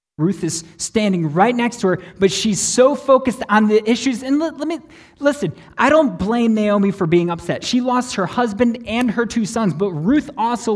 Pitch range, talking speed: 140-215 Hz, 200 wpm